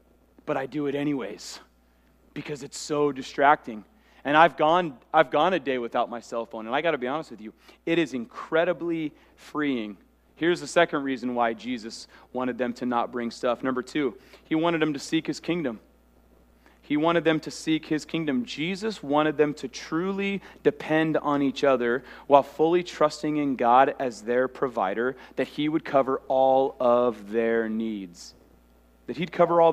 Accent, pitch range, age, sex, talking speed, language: American, 120-160 Hz, 30-49, male, 180 wpm, English